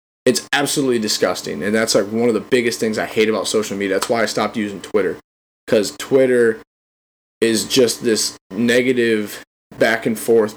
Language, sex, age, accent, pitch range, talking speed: English, male, 20-39, American, 105-145 Hz, 175 wpm